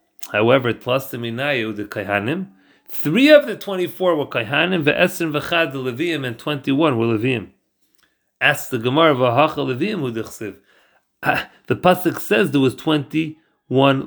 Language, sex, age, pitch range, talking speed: English, male, 40-59, 125-175 Hz, 130 wpm